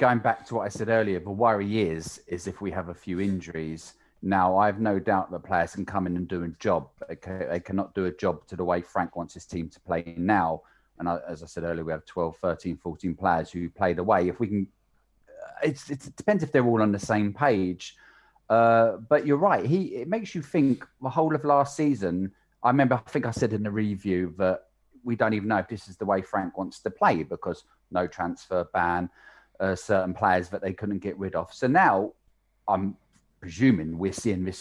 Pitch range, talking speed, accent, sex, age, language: 90-110 Hz, 230 wpm, British, male, 30-49, English